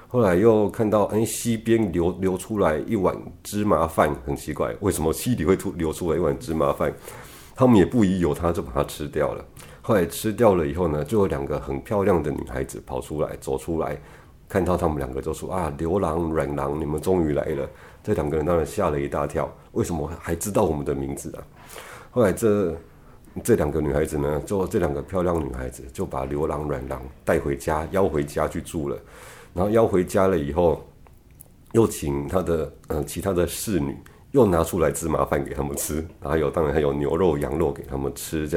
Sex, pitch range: male, 75-95 Hz